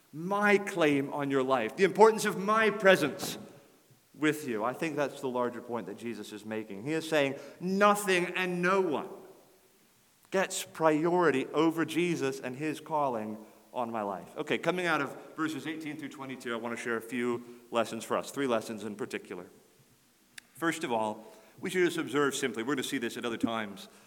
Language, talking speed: English, 190 wpm